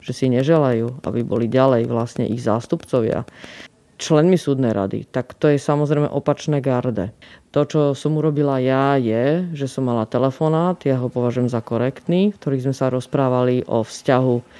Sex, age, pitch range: female, 30-49, 130-150 Hz